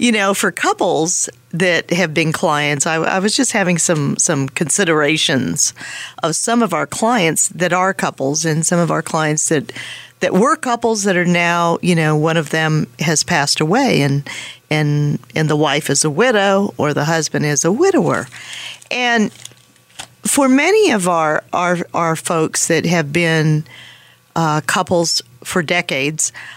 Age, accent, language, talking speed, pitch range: 50-69, American, English, 165 wpm, 160-205 Hz